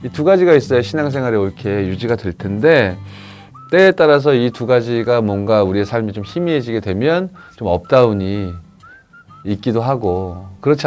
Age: 30-49